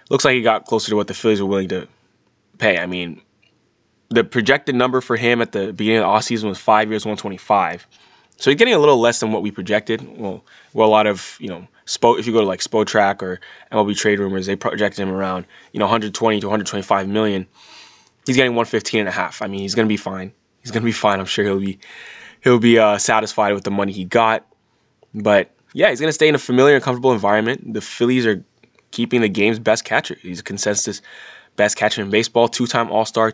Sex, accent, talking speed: male, American, 230 wpm